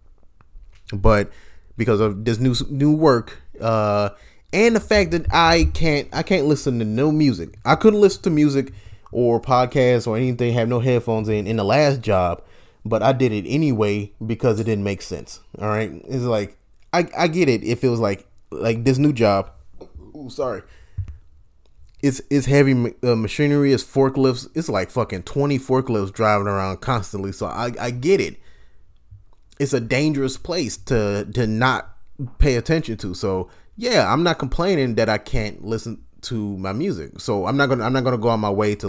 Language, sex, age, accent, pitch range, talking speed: English, male, 20-39, American, 100-135 Hz, 180 wpm